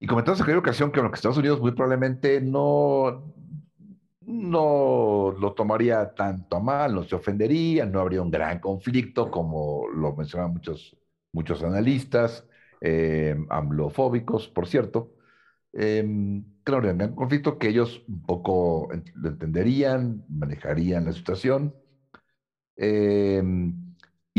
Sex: male